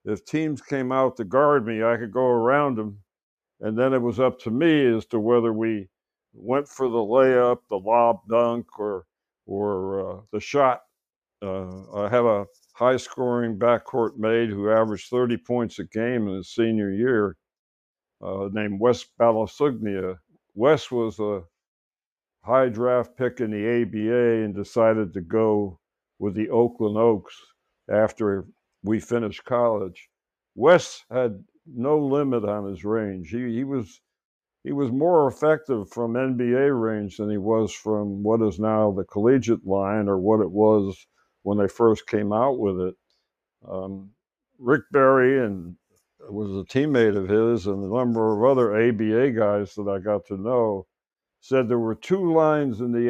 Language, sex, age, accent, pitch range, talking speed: English, male, 60-79, American, 105-125 Hz, 165 wpm